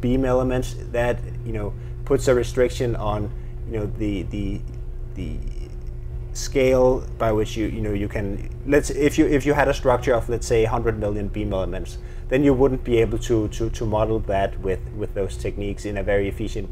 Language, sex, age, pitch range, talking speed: English, male, 20-39, 100-120 Hz, 195 wpm